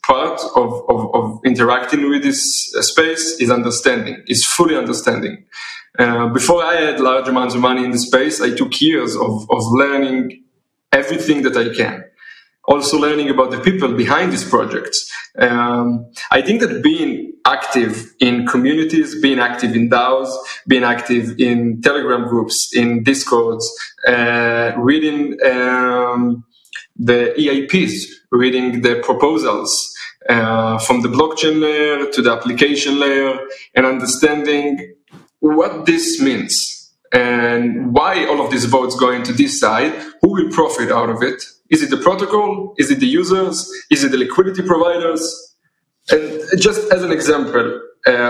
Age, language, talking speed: 20-39, English, 145 wpm